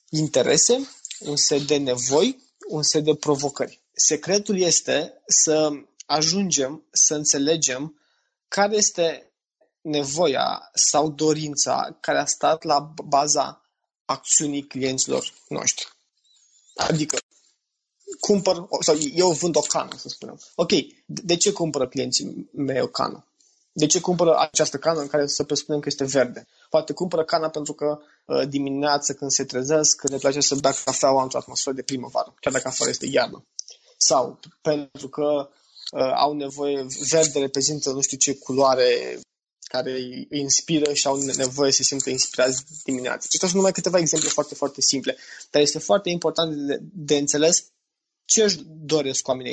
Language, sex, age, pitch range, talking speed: Romanian, male, 20-39, 140-160 Hz, 150 wpm